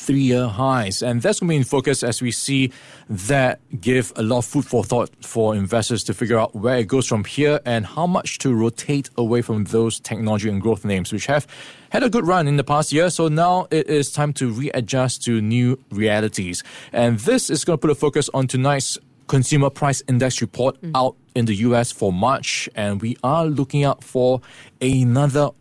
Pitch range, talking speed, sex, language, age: 115-140 Hz, 210 wpm, male, English, 20-39